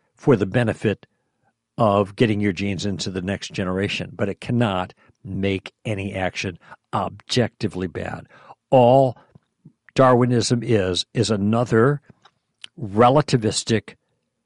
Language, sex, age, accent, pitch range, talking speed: English, male, 60-79, American, 105-140 Hz, 105 wpm